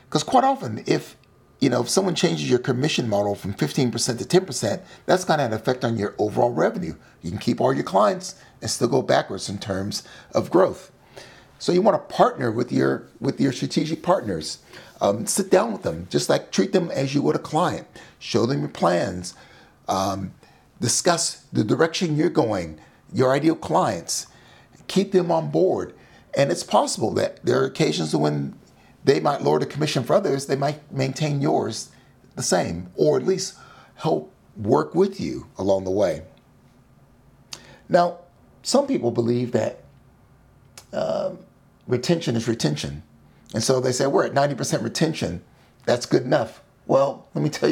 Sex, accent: male, American